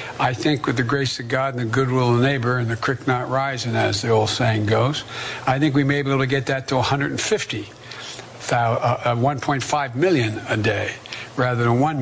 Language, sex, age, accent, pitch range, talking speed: English, male, 60-79, American, 120-135 Hz, 205 wpm